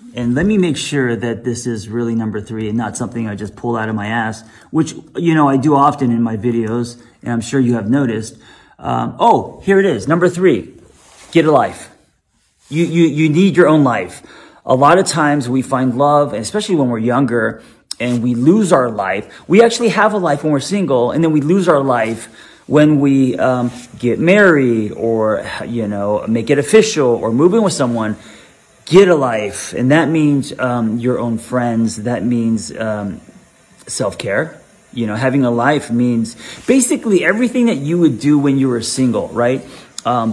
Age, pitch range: 30-49, 115-150 Hz